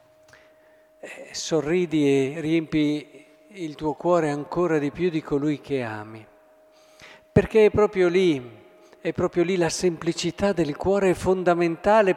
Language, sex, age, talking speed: Italian, male, 50-69, 130 wpm